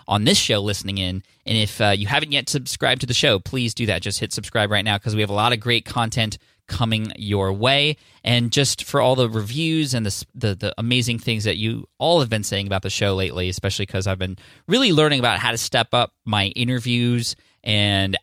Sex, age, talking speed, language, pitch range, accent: male, 20-39, 230 wpm, English, 100-125 Hz, American